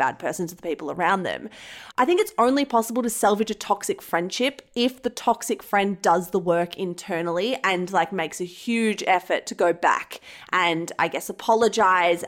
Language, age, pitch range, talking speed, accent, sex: English, 20-39, 190-250 Hz, 185 wpm, Australian, female